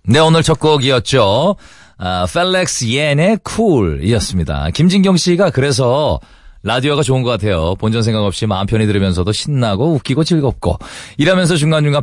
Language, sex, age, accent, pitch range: Korean, male, 40-59, native, 105-150 Hz